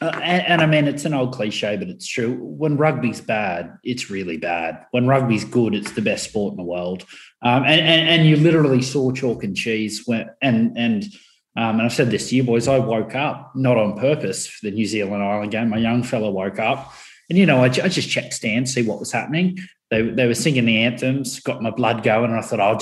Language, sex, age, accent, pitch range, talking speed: English, male, 20-39, Australian, 110-135 Hz, 240 wpm